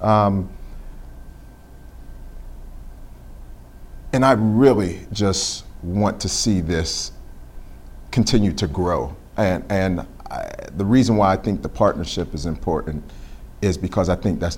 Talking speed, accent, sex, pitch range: 115 wpm, American, male, 85-115 Hz